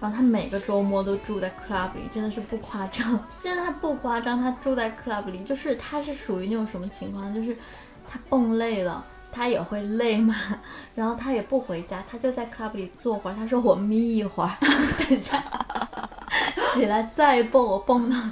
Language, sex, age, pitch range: Chinese, female, 10-29, 195-240 Hz